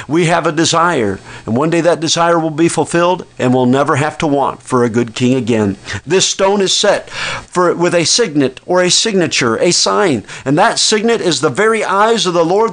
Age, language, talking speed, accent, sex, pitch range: 50-69, English, 220 wpm, American, male, 130-185 Hz